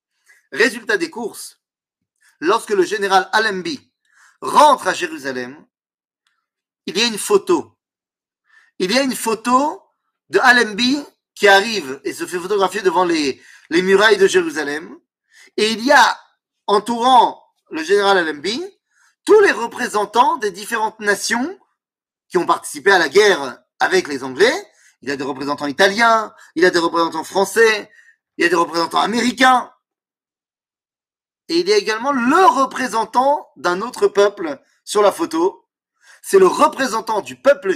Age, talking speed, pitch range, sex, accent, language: 30-49, 150 wpm, 200-335 Hz, male, French, French